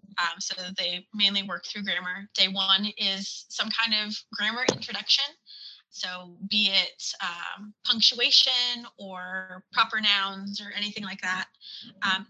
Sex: female